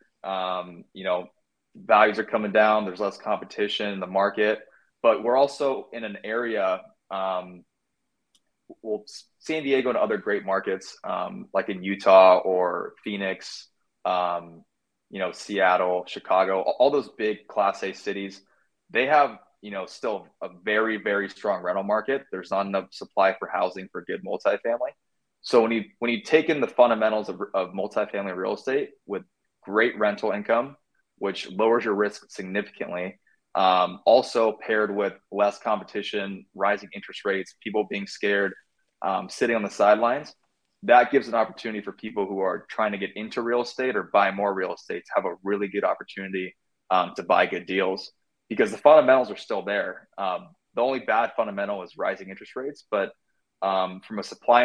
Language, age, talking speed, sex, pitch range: English, 20-39, 170 wpm, male, 95-115 Hz